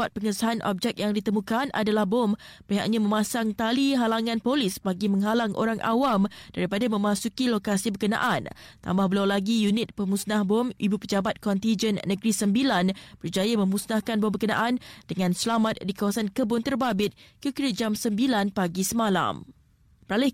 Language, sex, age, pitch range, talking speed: Malay, female, 20-39, 205-240 Hz, 140 wpm